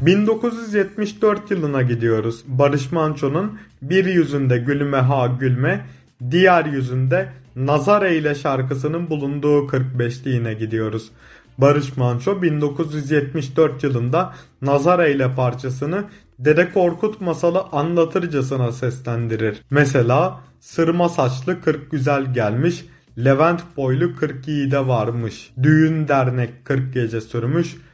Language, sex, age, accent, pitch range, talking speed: Turkish, male, 30-49, native, 130-175 Hz, 100 wpm